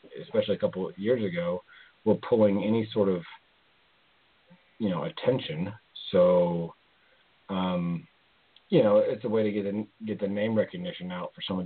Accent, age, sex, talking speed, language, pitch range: American, 40-59, male, 165 wpm, English, 90-125 Hz